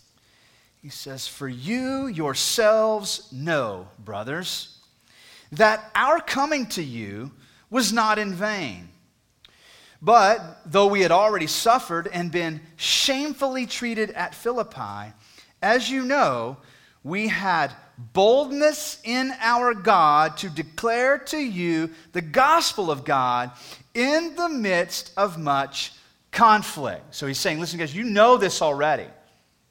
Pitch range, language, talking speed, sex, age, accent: 140-220 Hz, English, 120 wpm, male, 30-49, American